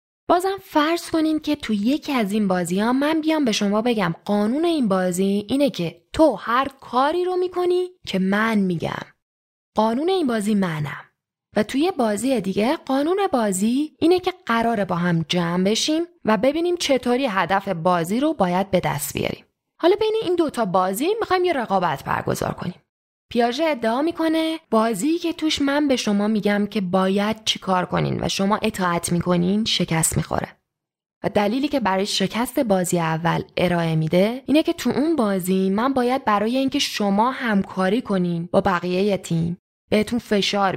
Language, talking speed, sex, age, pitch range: Persian, 165 wpm, female, 10-29, 190-280 Hz